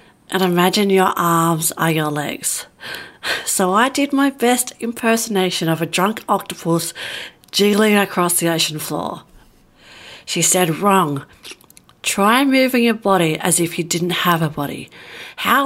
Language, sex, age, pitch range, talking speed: English, female, 40-59, 180-245 Hz, 140 wpm